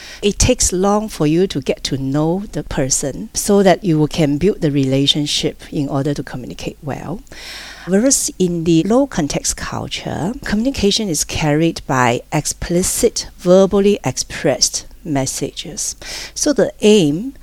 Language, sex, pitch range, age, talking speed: English, female, 140-185 Hz, 50-69, 140 wpm